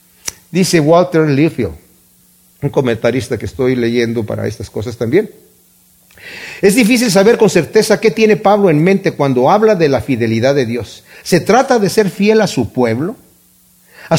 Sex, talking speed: male, 160 wpm